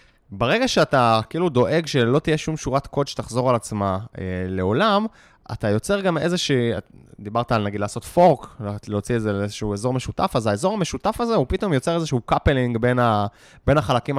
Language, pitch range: Hebrew, 110-155 Hz